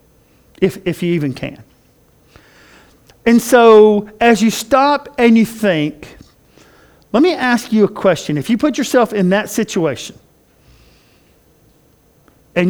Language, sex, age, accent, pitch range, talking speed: English, male, 50-69, American, 160-215 Hz, 130 wpm